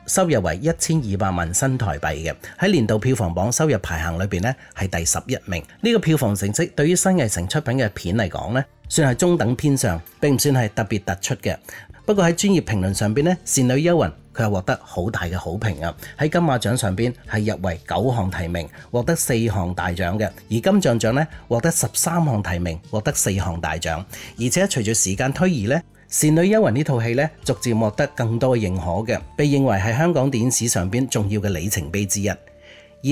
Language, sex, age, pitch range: Chinese, male, 30-49, 95-145 Hz